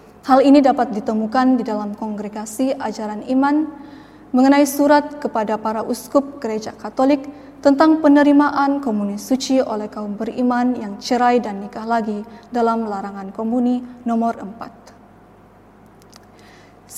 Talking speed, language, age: 115 wpm, Indonesian, 10-29